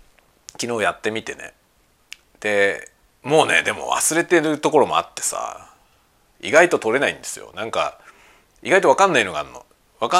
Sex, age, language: male, 40-59, Japanese